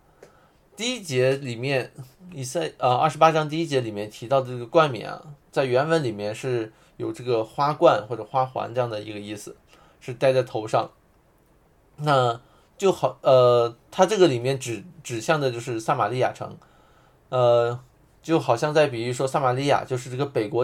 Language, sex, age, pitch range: Chinese, male, 20-39, 120-145 Hz